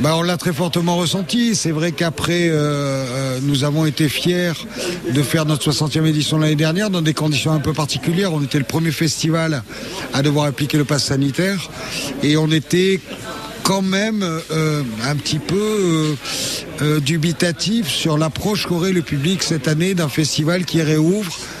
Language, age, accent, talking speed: French, 50-69, French, 165 wpm